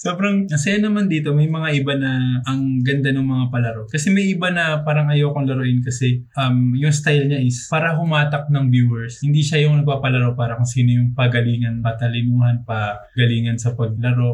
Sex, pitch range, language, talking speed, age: male, 120-145 Hz, Filipino, 190 wpm, 20-39